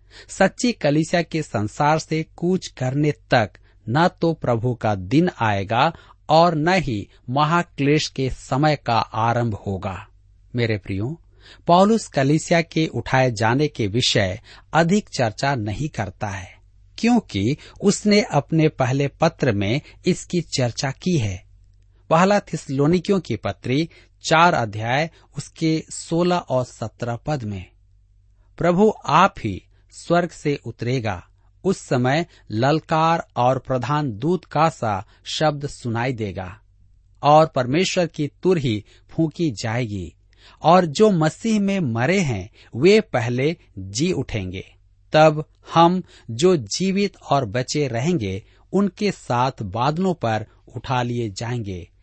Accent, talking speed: native, 120 wpm